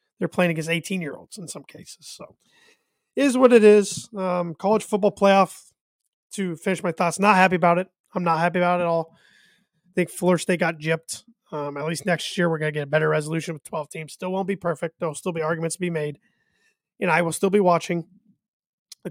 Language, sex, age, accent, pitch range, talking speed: English, male, 30-49, American, 160-205 Hz, 225 wpm